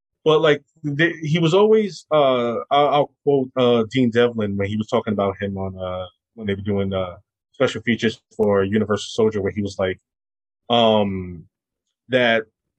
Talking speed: 175 wpm